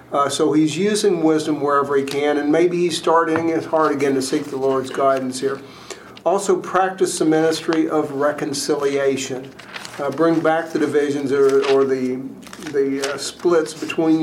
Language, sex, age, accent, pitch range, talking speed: English, male, 50-69, American, 140-165 Hz, 165 wpm